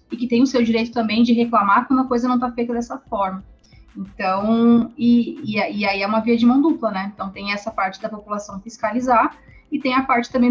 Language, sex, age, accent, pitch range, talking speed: Portuguese, female, 20-39, Brazilian, 205-255 Hz, 235 wpm